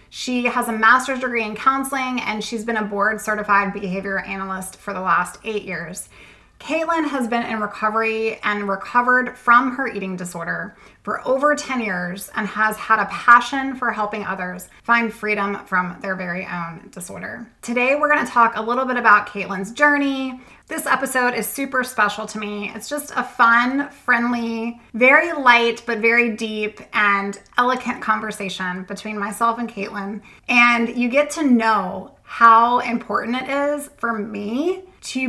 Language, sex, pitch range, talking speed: English, female, 205-245 Hz, 165 wpm